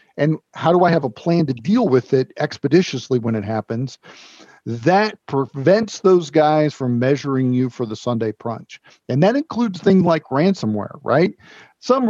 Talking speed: 170 wpm